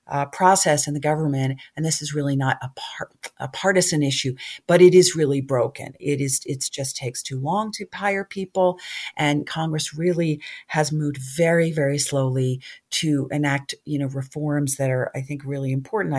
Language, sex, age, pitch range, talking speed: English, female, 40-59, 140-170 Hz, 180 wpm